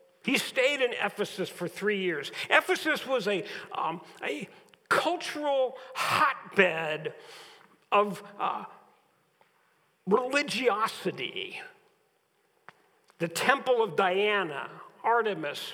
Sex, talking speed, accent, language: male, 80 wpm, American, English